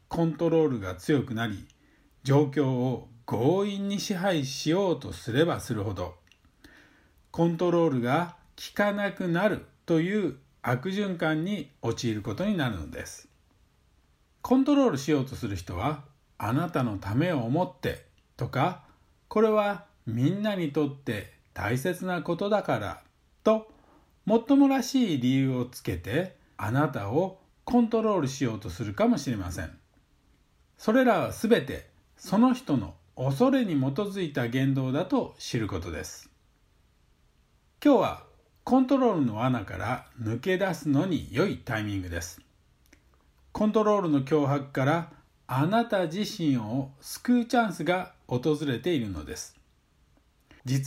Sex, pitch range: male, 115-185 Hz